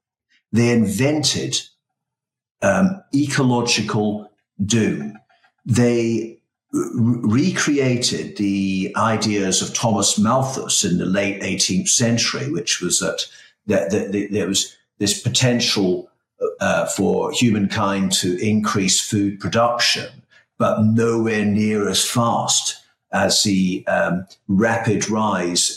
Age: 50-69